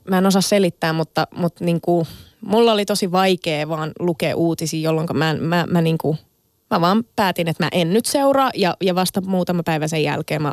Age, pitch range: 20-39, 165-200 Hz